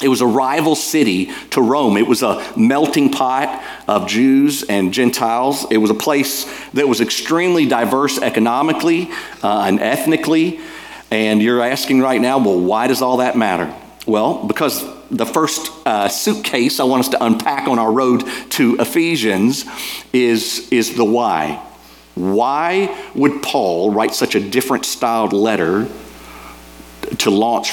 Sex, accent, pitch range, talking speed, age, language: male, American, 110-155 Hz, 150 wpm, 50-69, English